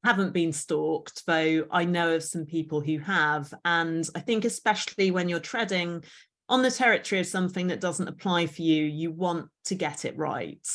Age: 30-49